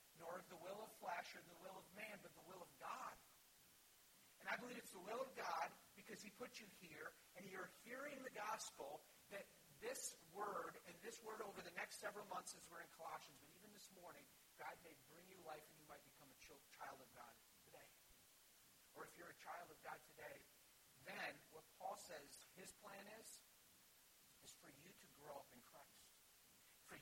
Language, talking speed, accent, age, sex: English, 200 wpm, American, 50-69, male